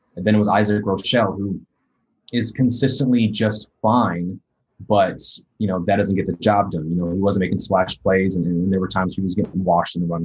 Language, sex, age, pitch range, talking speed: English, male, 20-39, 95-110 Hz, 230 wpm